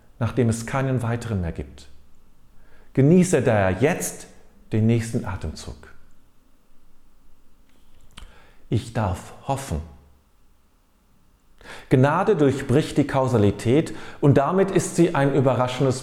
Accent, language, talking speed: German, German, 95 wpm